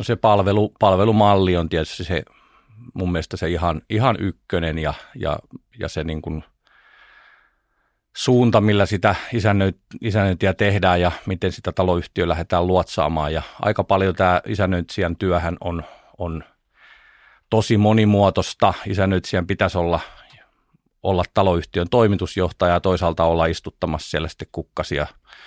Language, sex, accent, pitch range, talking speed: Finnish, male, native, 85-100 Hz, 125 wpm